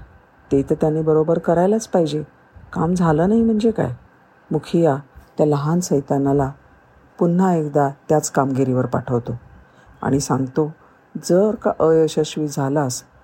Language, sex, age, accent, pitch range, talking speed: Marathi, female, 50-69, native, 140-165 Hz, 125 wpm